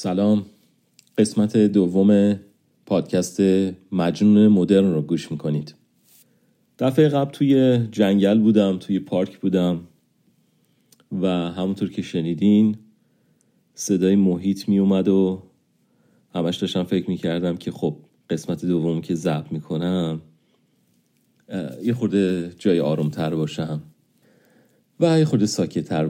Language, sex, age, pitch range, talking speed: Persian, male, 40-59, 85-100 Hz, 105 wpm